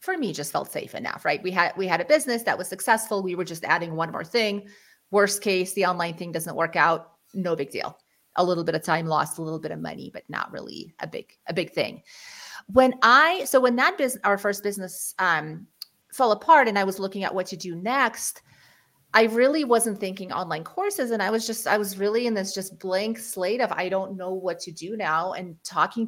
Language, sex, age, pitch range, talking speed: English, female, 30-49, 175-220 Hz, 235 wpm